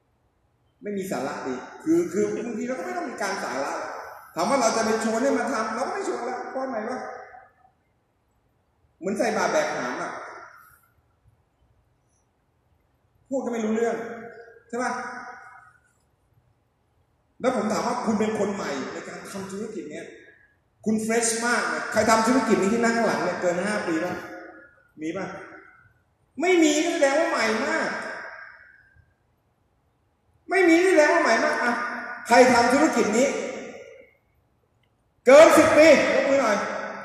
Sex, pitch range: male, 215-305 Hz